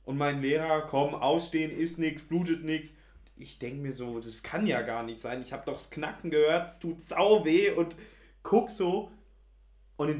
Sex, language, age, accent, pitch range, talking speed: male, German, 30-49, German, 140-180 Hz, 200 wpm